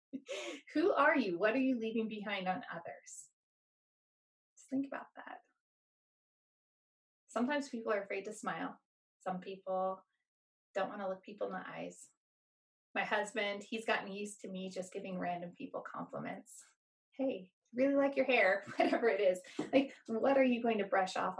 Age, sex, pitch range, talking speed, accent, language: 20-39, female, 200-260 Hz, 165 wpm, American, English